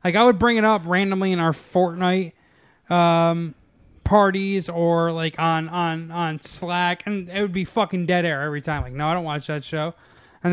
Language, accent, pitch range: English, American, 160-180 Hz